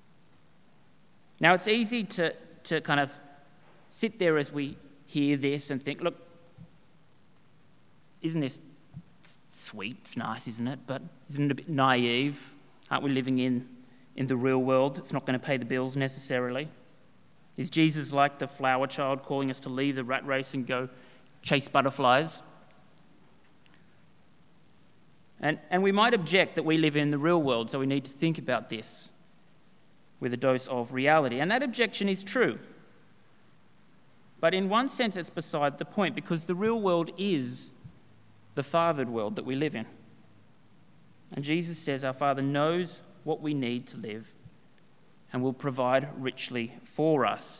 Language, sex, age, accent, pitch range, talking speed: English, male, 30-49, Australian, 130-165 Hz, 160 wpm